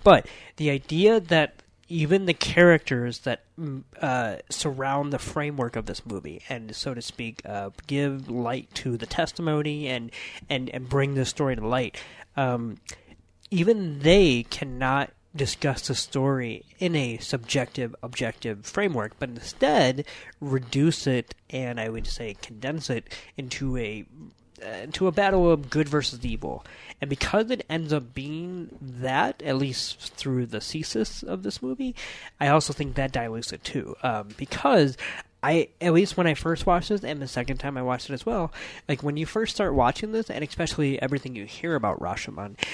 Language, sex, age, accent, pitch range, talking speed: English, male, 30-49, American, 120-150 Hz, 165 wpm